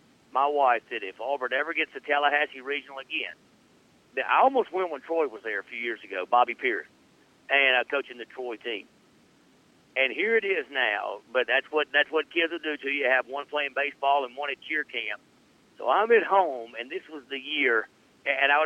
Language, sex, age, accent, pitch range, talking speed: English, male, 50-69, American, 130-150 Hz, 210 wpm